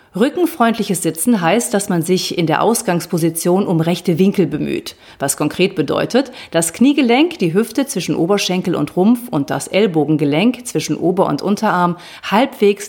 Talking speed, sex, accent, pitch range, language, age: 150 wpm, female, German, 165-220 Hz, German, 40-59